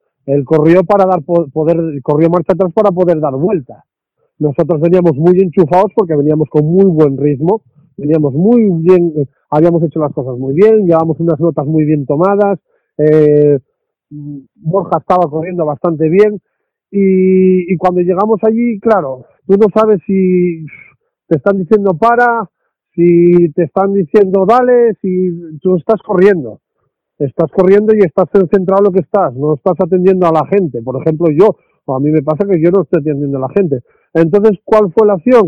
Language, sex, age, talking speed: Spanish, male, 40-59, 175 wpm